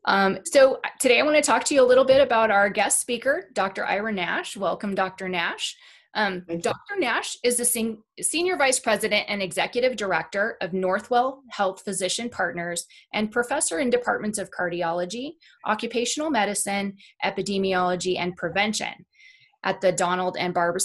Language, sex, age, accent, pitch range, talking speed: English, female, 20-39, American, 185-250 Hz, 155 wpm